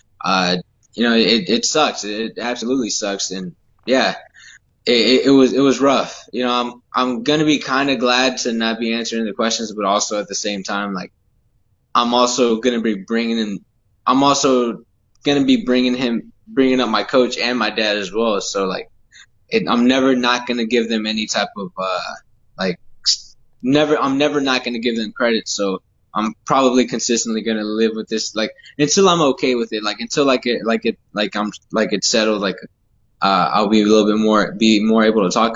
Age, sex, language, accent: 20-39, male, English, American